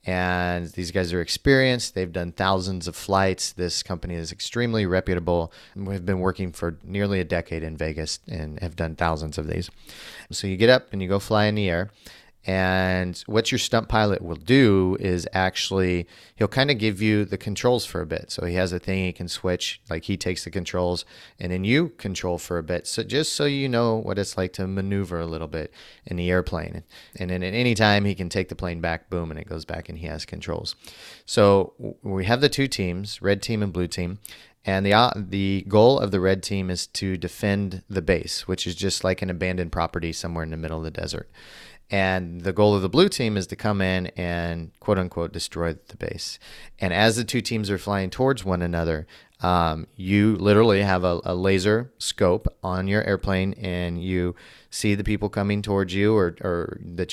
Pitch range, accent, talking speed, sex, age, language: 90-105 Hz, American, 215 wpm, male, 30-49, English